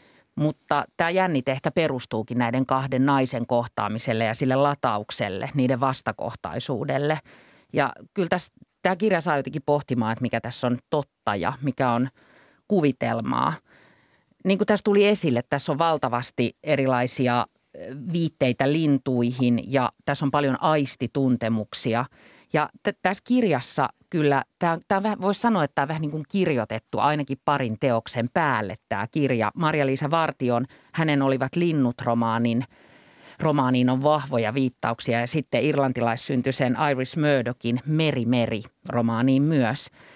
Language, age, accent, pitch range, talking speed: Finnish, 30-49, native, 120-160 Hz, 130 wpm